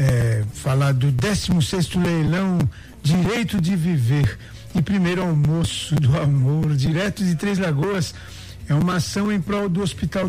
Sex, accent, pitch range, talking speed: male, Brazilian, 135-180 Hz, 145 wpm